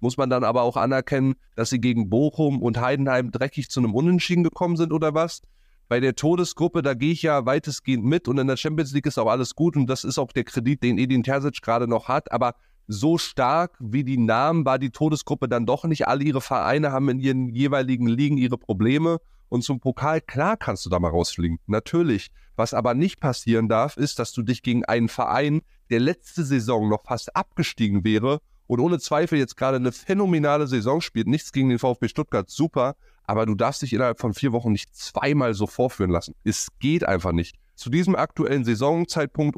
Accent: German